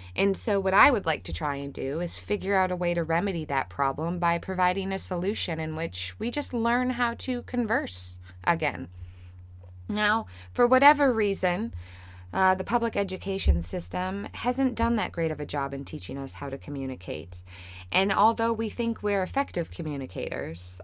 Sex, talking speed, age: female, 175 wpm, 20-39